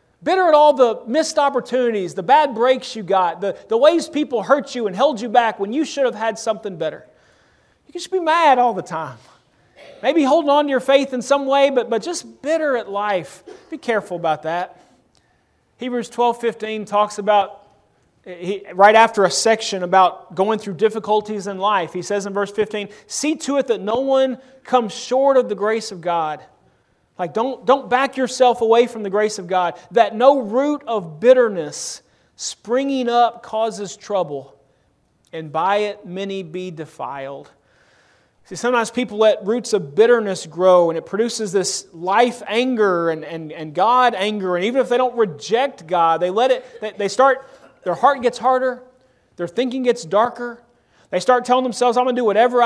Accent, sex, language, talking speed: American, male, English, 185 wpm